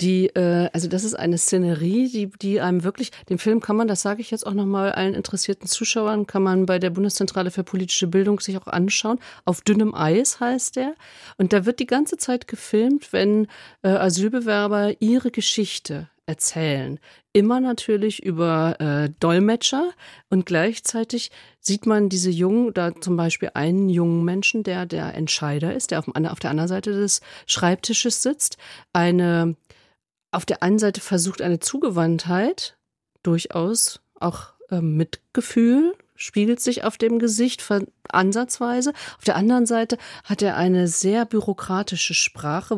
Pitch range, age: 175-225 Hz, 40-59